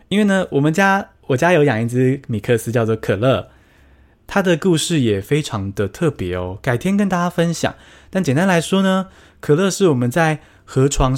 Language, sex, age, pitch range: Chinese, male, 20-39, 110-175 Hz